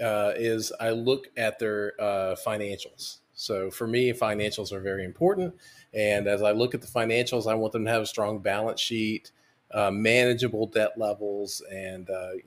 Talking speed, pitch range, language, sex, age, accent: 180 wpm, 110-140 Hz, English, male, 40-59, American